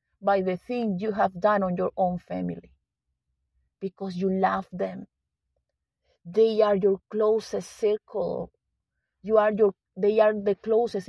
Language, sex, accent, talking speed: English, female, Venezuelan, 140 wpm